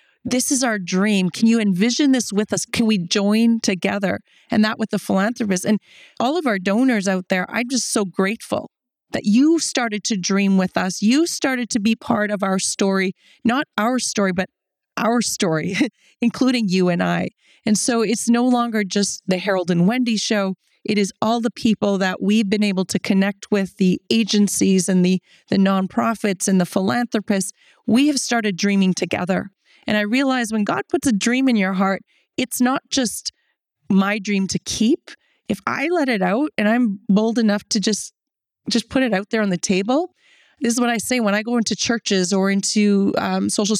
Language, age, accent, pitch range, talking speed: English, 30-49, American, 195-240 Hz, 195 wpm